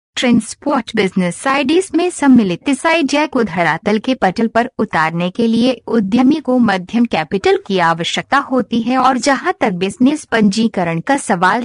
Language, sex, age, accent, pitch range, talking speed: Hindi, female, 50-69, native, 195-265 Hz, 150 wpm